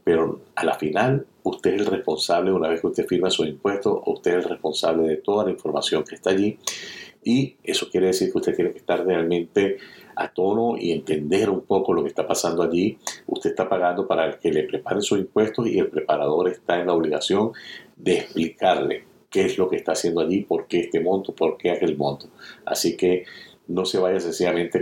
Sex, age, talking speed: male, 50-69, 210 wpm